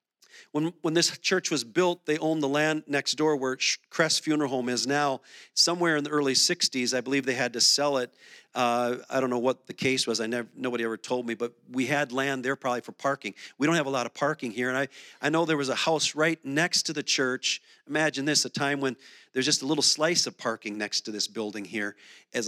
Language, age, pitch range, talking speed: English, 40-59, 130-165 Hz, 245 wpm